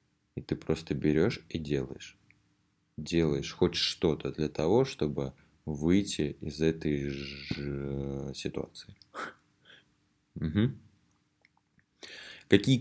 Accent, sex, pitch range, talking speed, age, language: native, male, 75-95 Hz, 85 wpm, 20-39, Russian